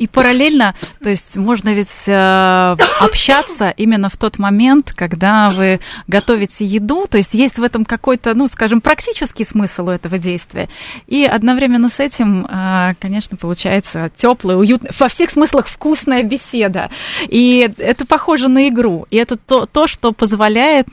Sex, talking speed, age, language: female, 155 wpm, 20-39, Russian